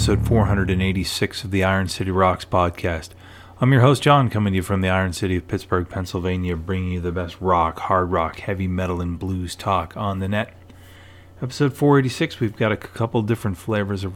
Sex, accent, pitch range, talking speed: male, American, 90-105 Hz, 195 wpm